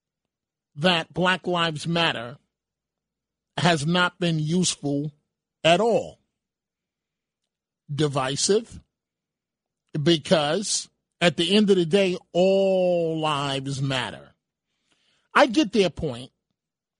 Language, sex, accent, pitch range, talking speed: English, male, American, 155-190 Hz, 90 wpm